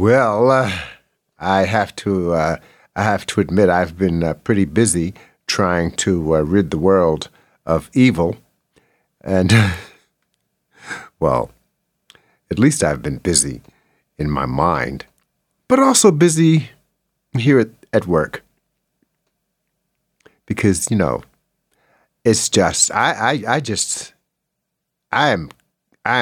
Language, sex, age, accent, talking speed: English, male, 50-69, American, 120 wpm